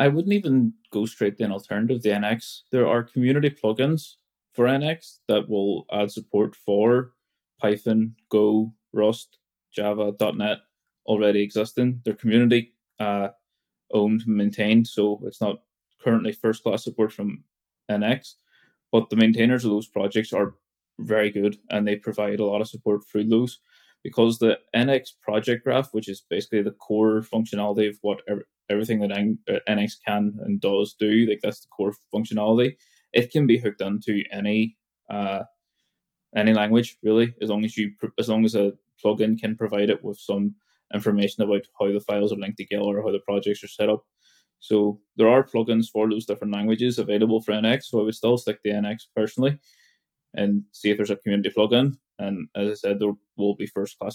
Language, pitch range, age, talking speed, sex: English, 105-115 Hz, 20-39, 175 wpm, male